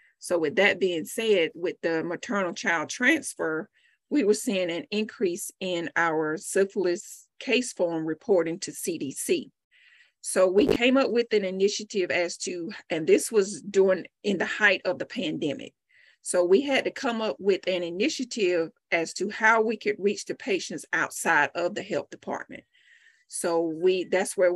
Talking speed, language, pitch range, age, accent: 165 wpm, English, 175-235 Hz, 40-59, American